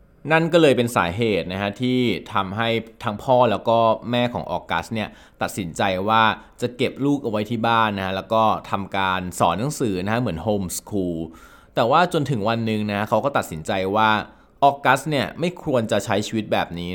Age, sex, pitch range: 20-39, male, 95-125 Hz